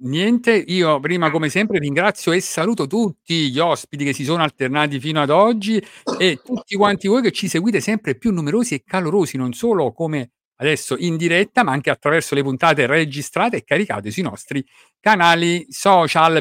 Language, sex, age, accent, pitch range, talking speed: Italian, male, 50-69, native, 145-185 Hz, 175 wpm